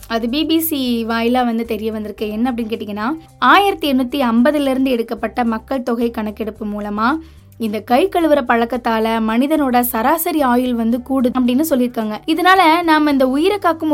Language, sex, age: Tamil, female, 20-39